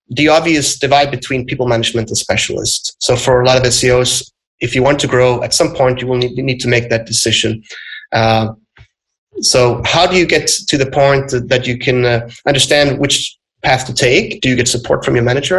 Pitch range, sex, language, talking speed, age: 120-145 Hz, male, English, 210 wpm, 30-49